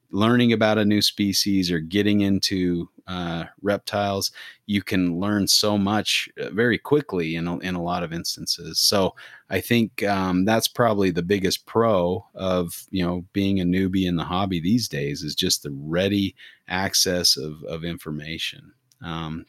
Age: 30-49